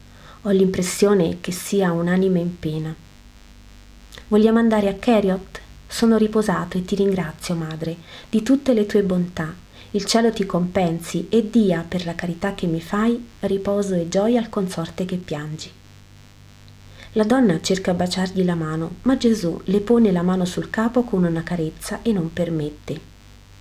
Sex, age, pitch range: female, 30-49, 155-205 Hz